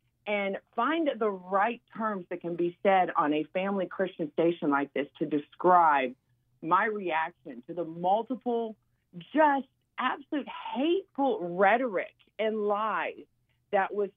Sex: female